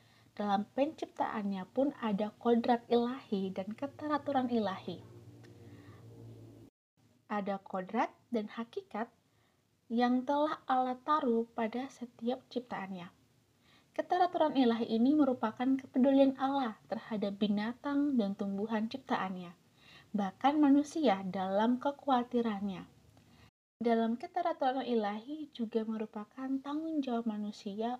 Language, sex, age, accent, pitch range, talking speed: Indonesian, female, 20-39, native, 190-245 Hz, 90 wpm